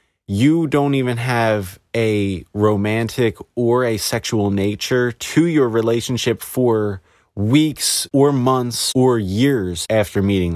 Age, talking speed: 20-39, 120 wpm